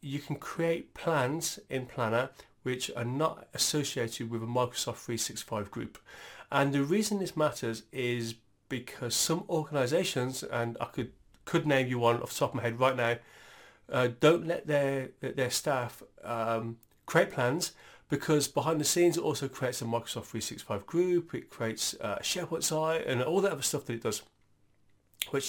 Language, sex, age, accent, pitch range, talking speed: English, male, 30-49, British, 115-150 Hz, 170 wpm